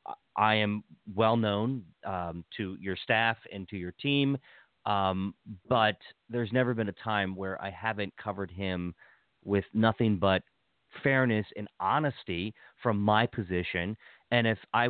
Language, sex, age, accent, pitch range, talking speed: English, male, 40-59, American, 95-125 Hz, 145 wpm